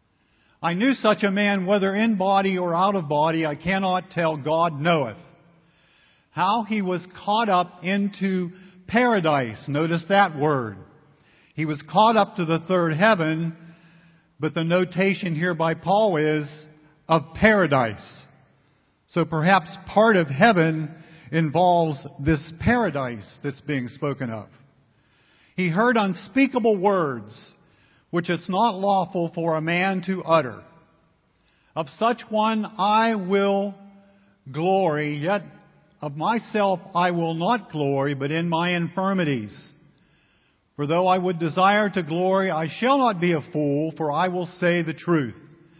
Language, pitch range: English, 150-190 Hz